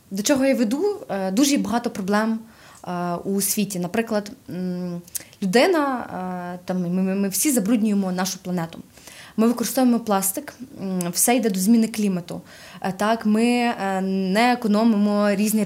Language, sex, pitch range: Ukrainian, female, 195-245 Hz